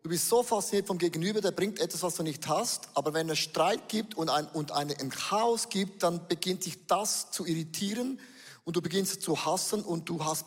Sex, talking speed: male, 225 wpm